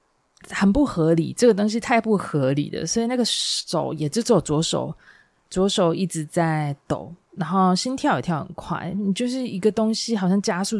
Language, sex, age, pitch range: Chinese, female, 20-39, 155-200 Hz